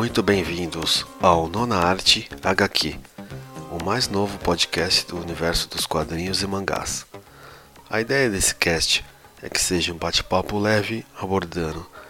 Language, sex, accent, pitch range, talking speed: Portuguese, male, Brazilian, 85-110 Hz, 135 wpm